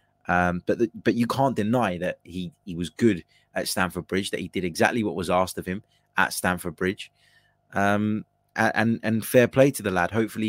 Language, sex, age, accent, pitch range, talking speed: English, male, 20-39, British, 85-110 Hz, 205 wpm